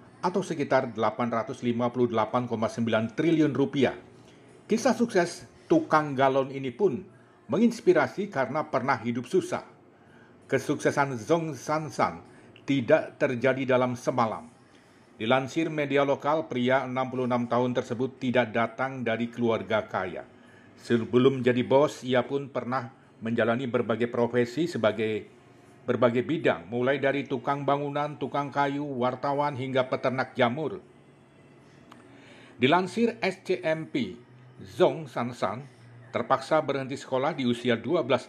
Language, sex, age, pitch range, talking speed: Indonesian, male, 50-69, 120-140 Hz, 110 wpm